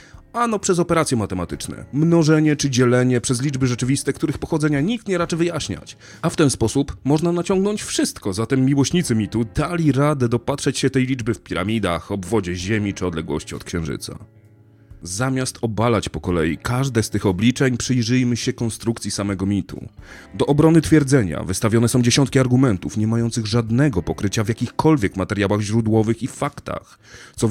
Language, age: Polish, 30-49